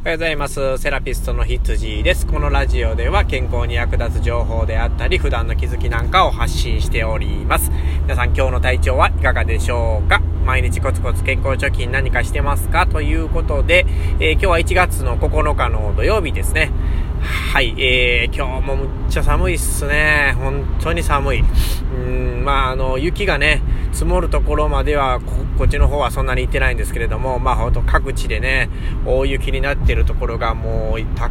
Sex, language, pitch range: male, Japanese, 70-90 Hz